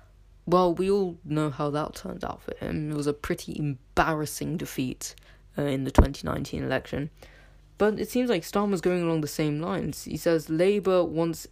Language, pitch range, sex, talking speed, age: English, 145-175 Hz, female, 180 wpm, 20-39